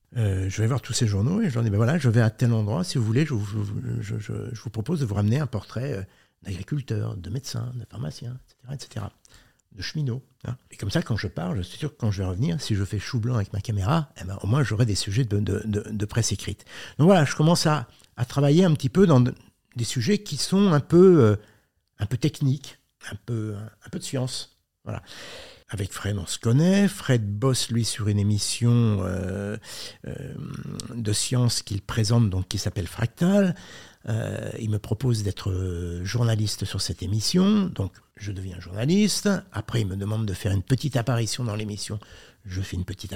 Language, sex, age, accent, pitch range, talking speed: French, male, 60-79, French, 105-135 Hz, 215 wpm